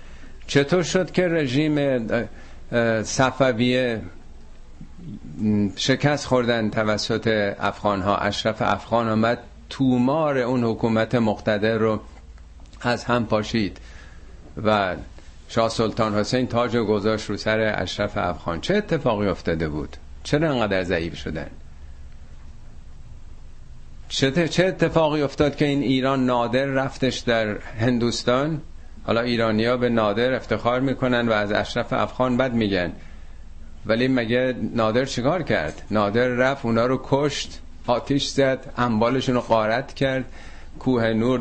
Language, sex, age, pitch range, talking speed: Persian, male, 50-69, 100-125 Hz, 115 wpm